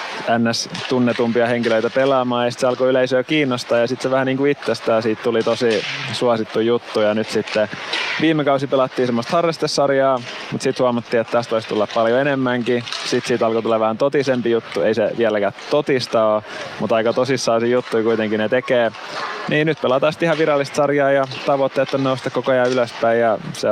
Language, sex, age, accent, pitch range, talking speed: Finnish, male, 20-39, native, 110-130 Hz, 180 wpm